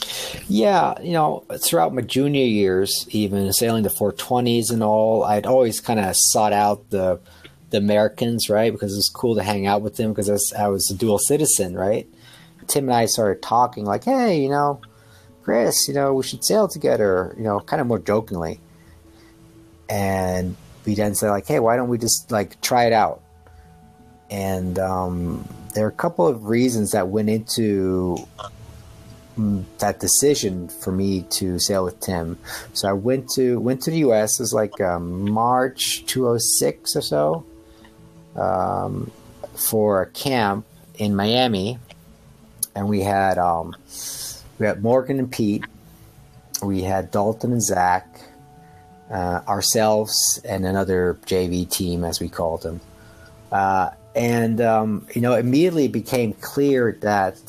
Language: English